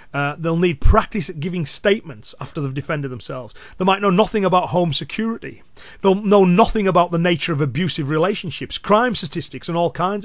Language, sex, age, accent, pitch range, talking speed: English, male, 30-49, British, 145-185 Hz, 185 wpm